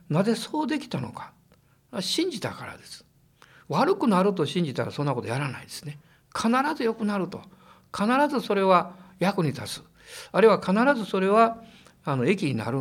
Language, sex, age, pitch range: Japanese, male, 60-79, 135-210 Hz